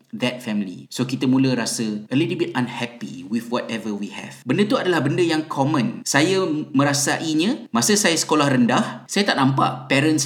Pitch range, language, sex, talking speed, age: 115-185 Hz, Malay, male, 175 wpm, 30-49